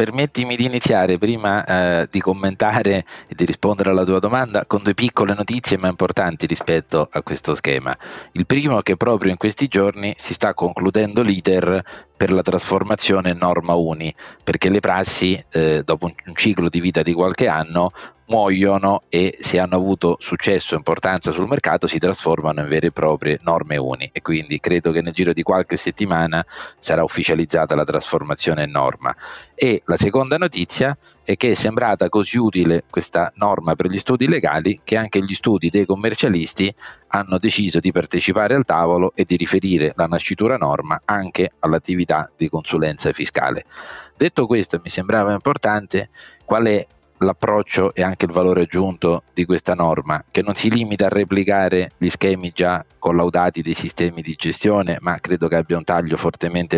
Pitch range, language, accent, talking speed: 85-105 Hz, Italian, native, 170 wpm